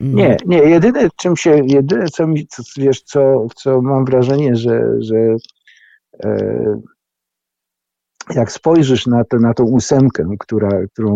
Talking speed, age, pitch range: 140 wpm, 50-69, 95-125 Hz